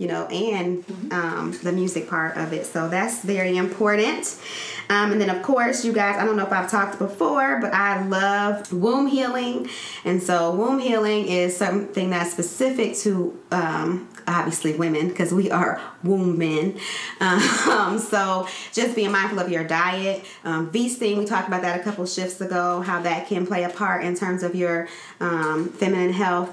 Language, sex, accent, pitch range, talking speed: English, female, American, 175-205 Hz, 180 wpm